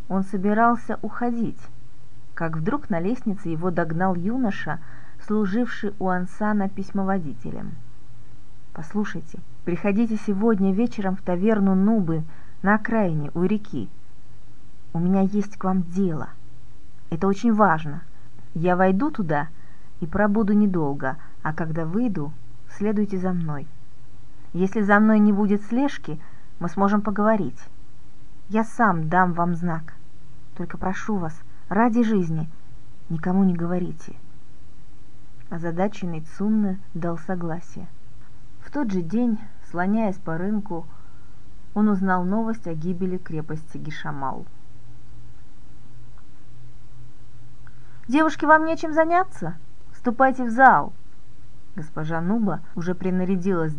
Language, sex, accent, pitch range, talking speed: Russian, female, native, 155-210 Hz, 110 wpm